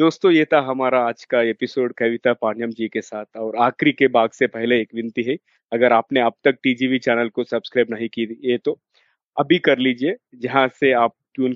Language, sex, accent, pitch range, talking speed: Hindi, male, native, 115-135 Hz, 175 wpm